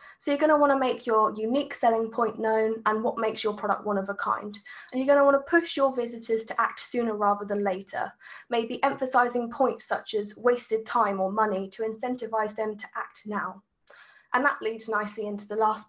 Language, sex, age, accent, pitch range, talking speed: English, female, 10-29, British, 210-260 Hz, 205 wpm